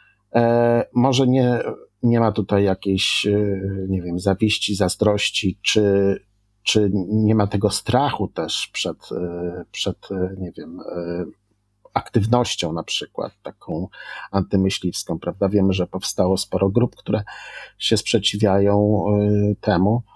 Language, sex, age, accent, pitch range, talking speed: Polish, male, 50-69, native, 100-130 Hz, 105 wpm